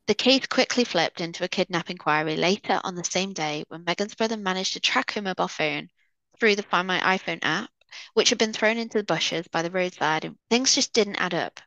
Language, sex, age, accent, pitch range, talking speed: English, female, 20-39, British, 170-210 Hz, 220 wpm